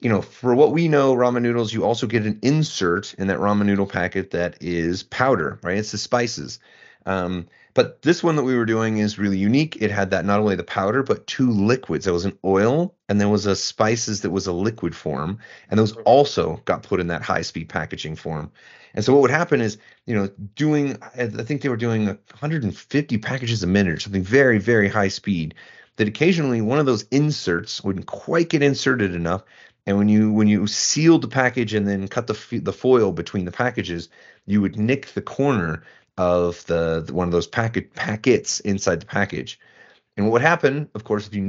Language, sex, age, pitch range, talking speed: English, male, 30-49, 95-125 Hz, 215 wpm